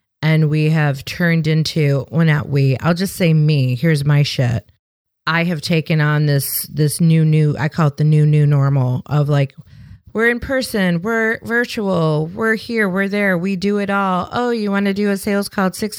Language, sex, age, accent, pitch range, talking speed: English, female, 30-49, American, 145-190 Hz, 205 wpm